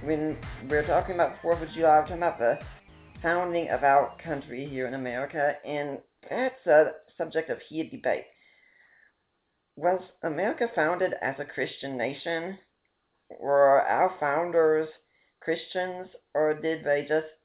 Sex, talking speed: female, 150 wpm